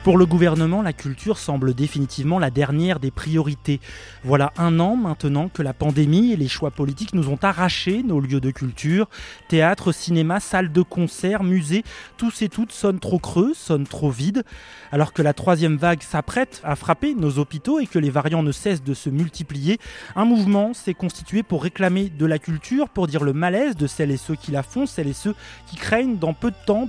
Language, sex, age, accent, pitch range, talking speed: French, male, 20-39, French, 150-205 Hz, 205 wpm